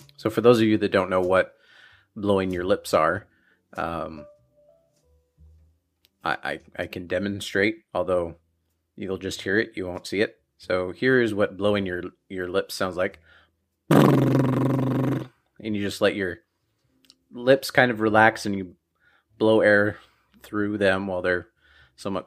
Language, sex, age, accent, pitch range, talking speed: English, male, 30-49, American, 90-110 Hz, 150 wpm